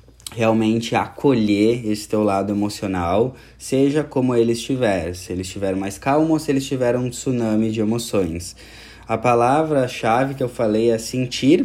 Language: Portuguese